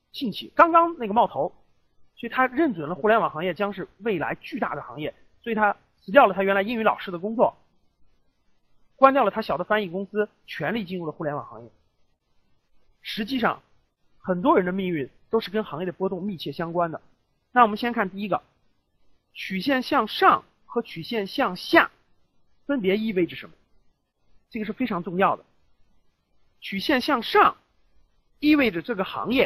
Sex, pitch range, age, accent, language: male, 190-270 Hz, 30-49, native, Chinese